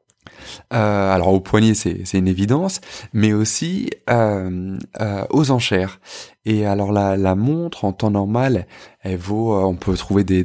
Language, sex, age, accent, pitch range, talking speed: French, male, 20-39, French, 95-120 Hz, 165 wpm